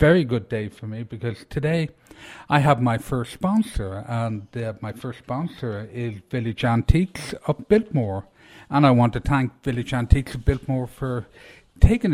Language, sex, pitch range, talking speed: English, male, 115-145 Hz, 165 wpm